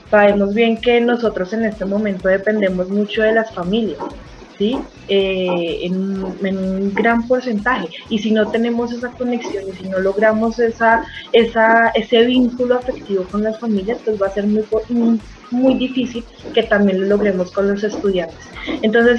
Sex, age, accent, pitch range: female, 20-39, Colombian, 195-225 Hz